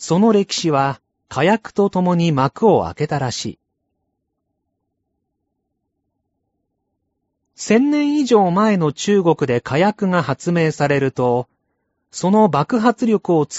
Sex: male